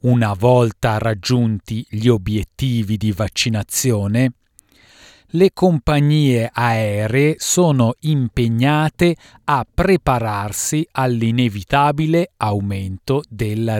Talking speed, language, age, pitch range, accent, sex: 75 wpm, Italian, 40-59, 105-135 Hz, native, male